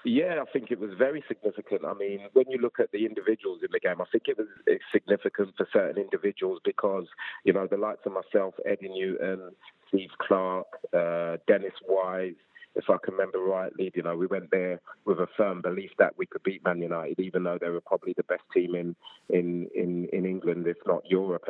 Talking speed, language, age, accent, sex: 210 wpm, English, 30-49, British, male